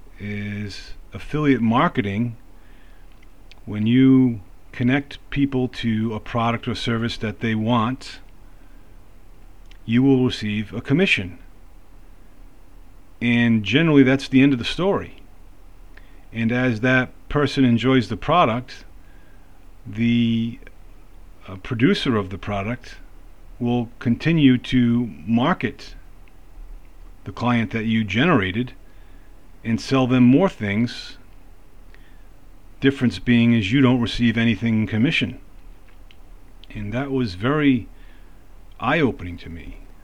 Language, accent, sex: English, American, male